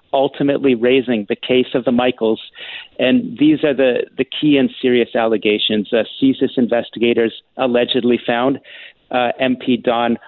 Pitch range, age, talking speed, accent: 120-140 Hz, 50-69, 140 wpm, American